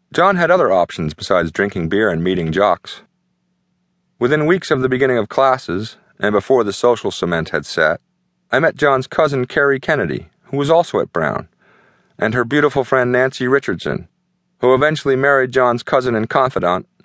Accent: American